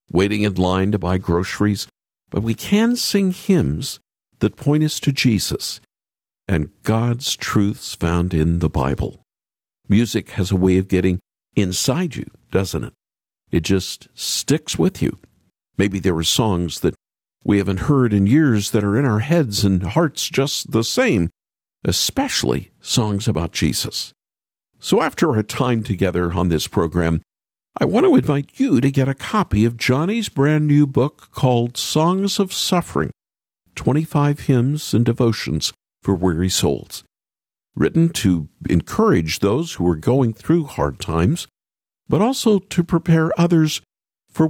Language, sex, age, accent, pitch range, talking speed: English, male, 50-69, American, 95-145 Hz, 150 wpm